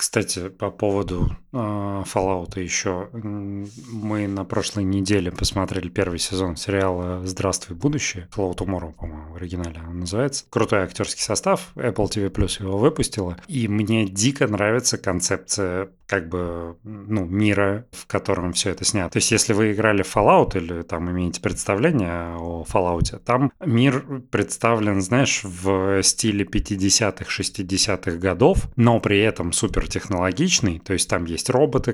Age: 30-49